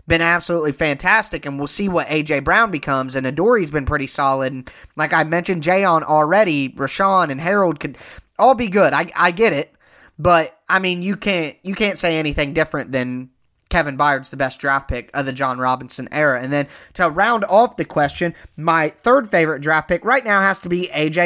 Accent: American